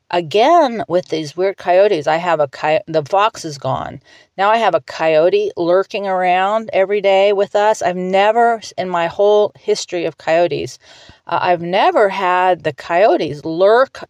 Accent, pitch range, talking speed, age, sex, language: American, 160-205 Hz, 165 wpm, 40-59, female, English